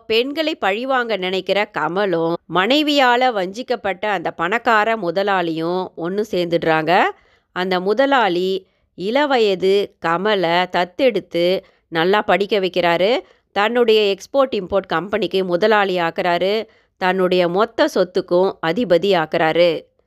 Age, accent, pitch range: 30-49, native, 175-220 Hz